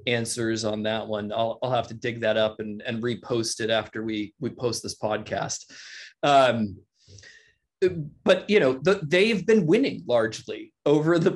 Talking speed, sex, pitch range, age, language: 170 wpm, male, 120-160 Hz, 20-39, English